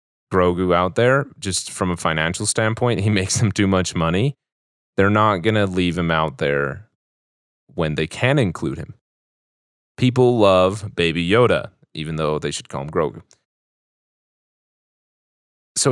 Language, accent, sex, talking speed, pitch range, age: English, American, male, 145 wpm, 80-105 Hz, 30-49